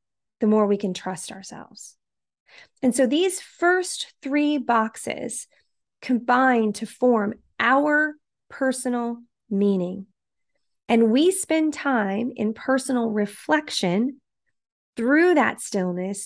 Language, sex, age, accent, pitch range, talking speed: English, female, 30-49, American, 195-260 Hz, 105 wpm